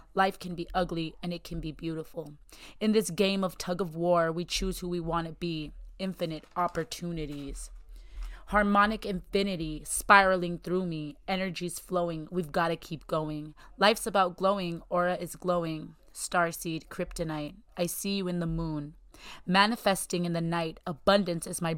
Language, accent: English, American